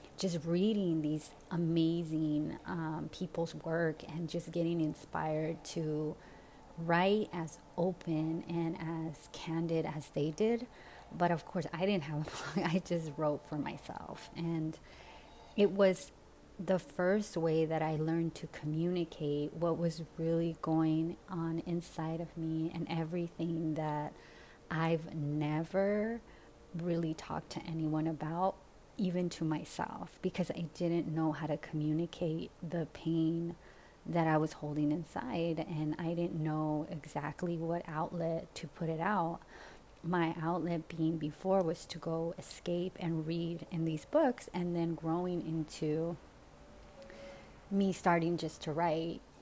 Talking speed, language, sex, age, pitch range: 135 wpm, English, female, 30-49, 160-170 Hz